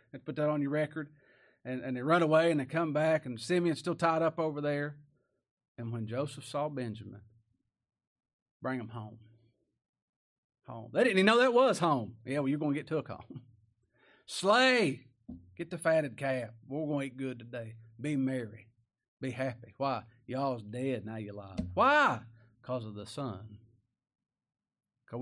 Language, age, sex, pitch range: English, 40-59, male, 115-155 Hz